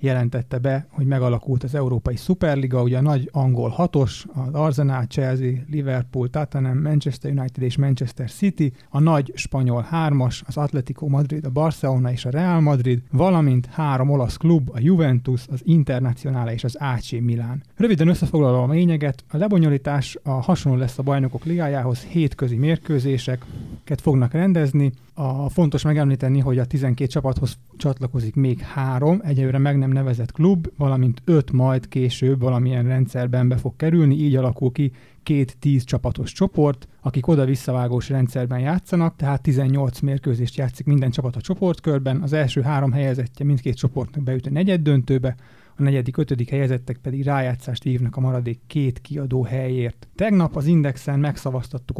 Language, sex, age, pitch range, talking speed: Hungarian, male, 30-49, 130-150 Hz, 150 wpm